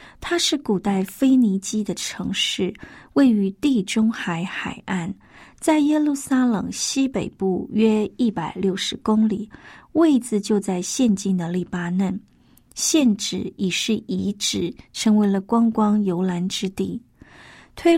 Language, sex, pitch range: Chinese, female, 190-245 Hz